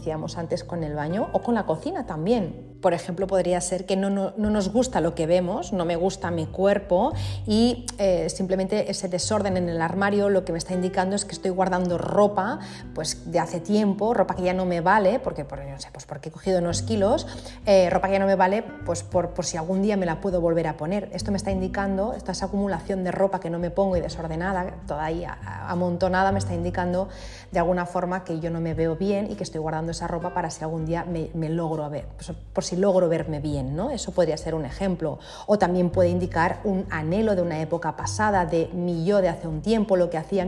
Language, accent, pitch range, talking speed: Spanish, Spanish, 165-195 Hz, 235 wpm